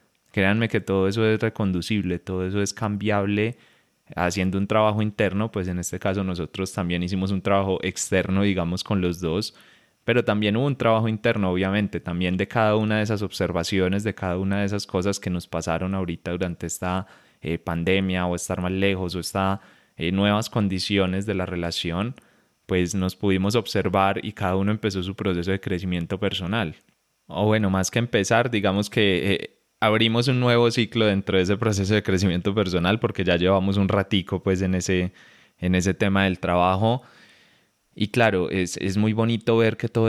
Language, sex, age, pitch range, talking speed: Spanish, male, 20-39, 90-105 Hz, 185 wpm